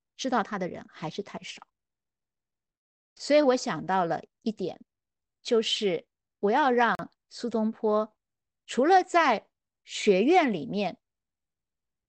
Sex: female